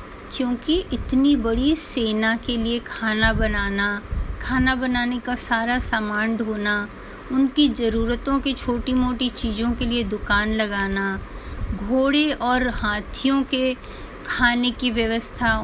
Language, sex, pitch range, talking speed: Hindi, female, 220-265 Hz, 120 wpm